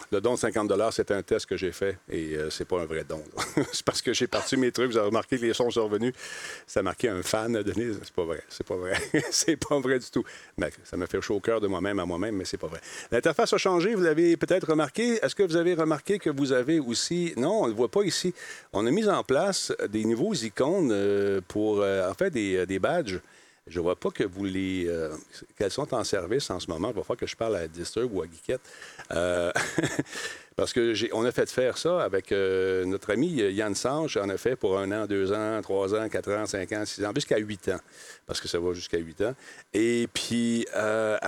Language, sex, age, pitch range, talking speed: French, male, 50-69, 100-165 Hz, 250 wpm